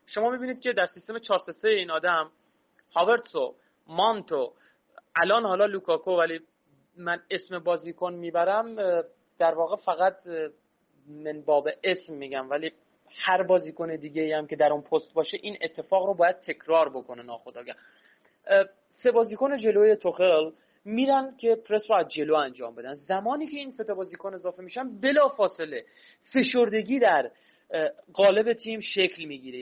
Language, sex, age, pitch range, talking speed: Persian, male, 30-49, 170-235 Hz, 140 wpm